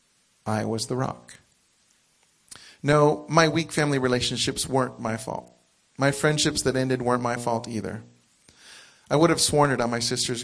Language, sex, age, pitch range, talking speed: English, male, 40-59, 115-140 Hz, 160 wpm